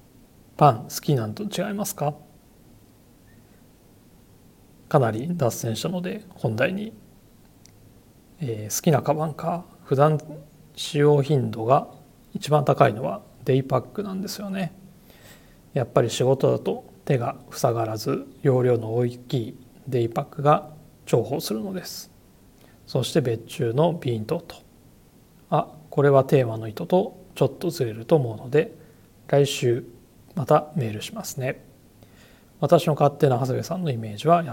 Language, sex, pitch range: Japanese, male, 120-170 Hz